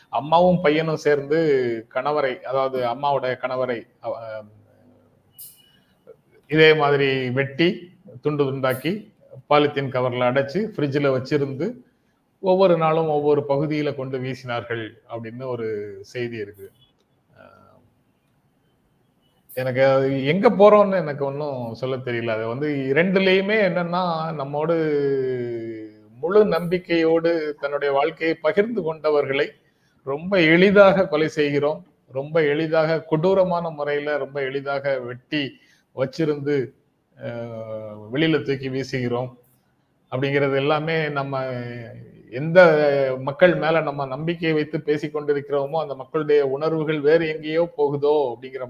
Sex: male